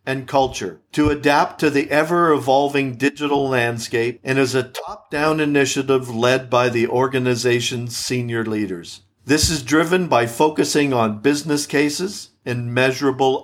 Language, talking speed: English, 145 wpm